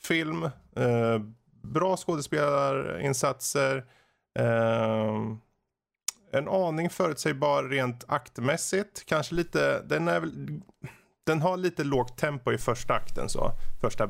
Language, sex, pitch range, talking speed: Swedish, male, 115-145 Hz, 105 wpm